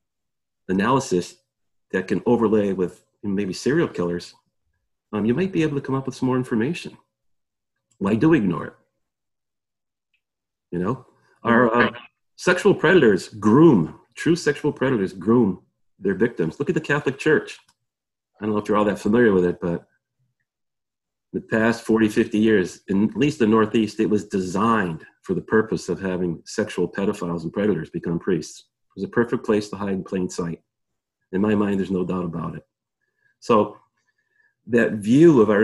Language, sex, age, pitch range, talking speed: English, male, 40-59, 95-130 Hz, 170 wpm